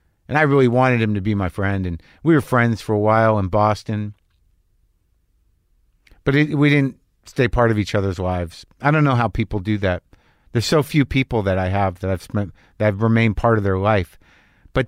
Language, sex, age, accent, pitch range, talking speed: English, male, 50-69, American, 95-120 Hz, 210 wpm